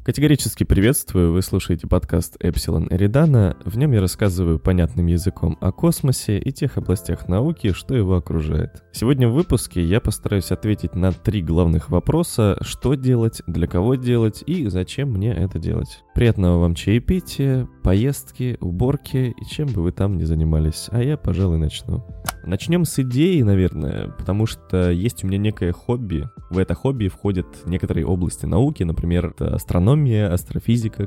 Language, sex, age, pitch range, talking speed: Russian, male, 20-39, 90-120 Hz, 155 wpm